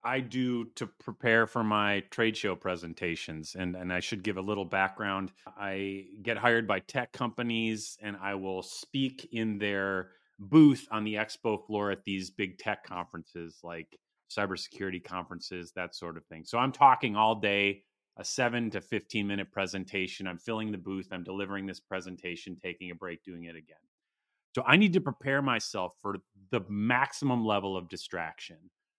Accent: American